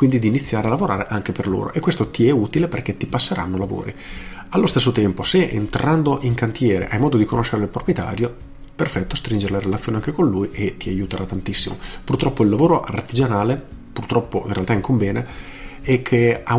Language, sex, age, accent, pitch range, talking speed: Italian, male, 40-59, native, 100-130 Hz, 190 wpm